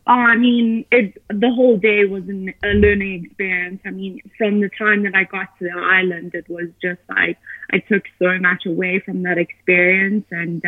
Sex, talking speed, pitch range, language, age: female, 195 wpm, 190-215 Hz, English, 20-39